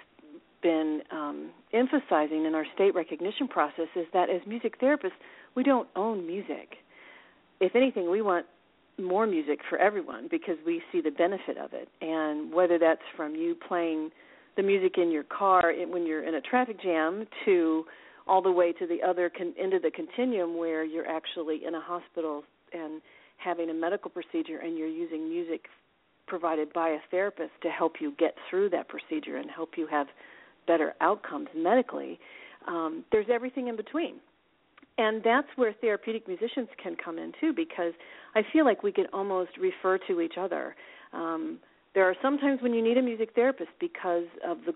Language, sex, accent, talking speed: English, female, American, 175 wpm